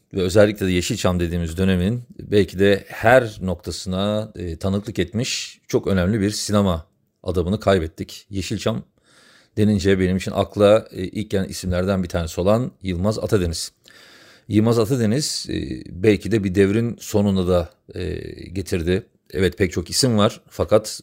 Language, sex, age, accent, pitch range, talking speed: Turkish, male, 40-59, native, 90-105 Hz, 140 wpm